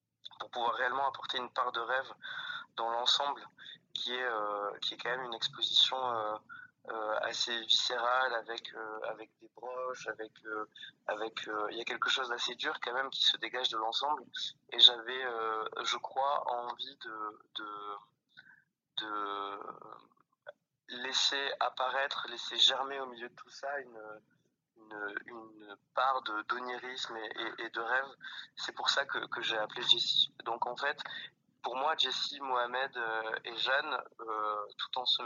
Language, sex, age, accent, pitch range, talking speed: French, male, 20-39, French, 110-130 Hz, 160 wpm